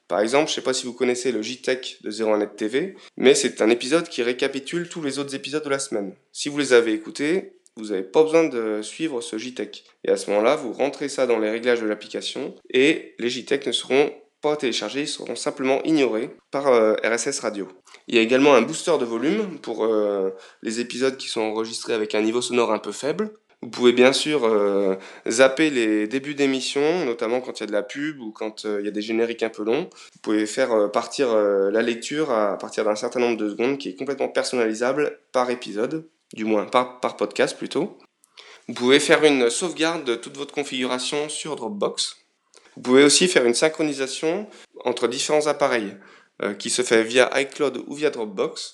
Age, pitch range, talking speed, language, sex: 20-39, 110-145 Hz, 215 wpm, French, male